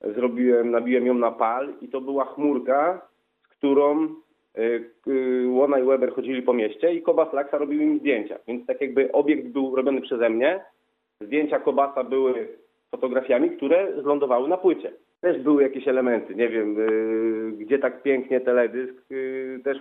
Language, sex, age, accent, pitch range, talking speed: Polish, male, 30-49, native, 130-200 Hz, 165 wpm